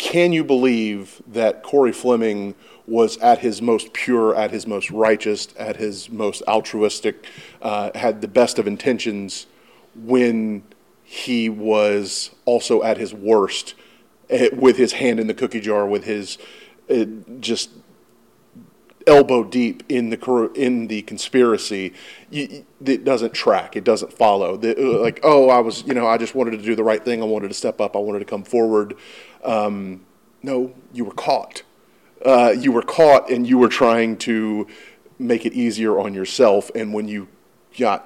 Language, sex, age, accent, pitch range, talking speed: English, male, 30-49, American, 105-120 Hz, 160 wpm